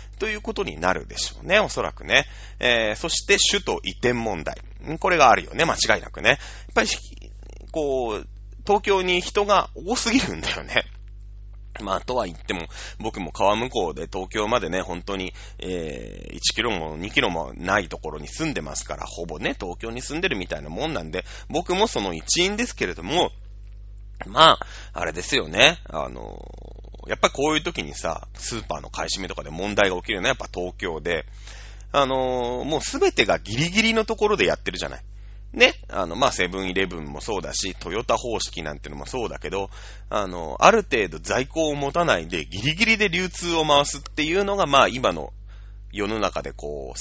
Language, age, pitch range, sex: Japanese, 30-49, 100-155 Hz, male